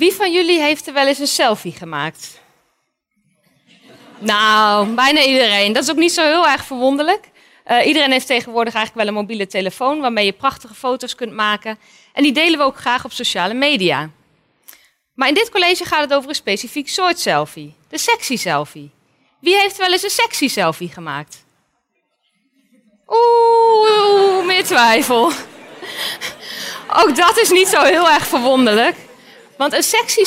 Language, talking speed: Dutch, 165 wpm